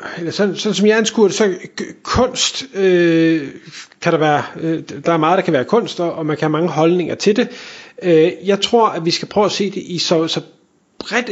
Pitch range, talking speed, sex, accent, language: 155-190 Hz, 235 wpm, male, native, Danish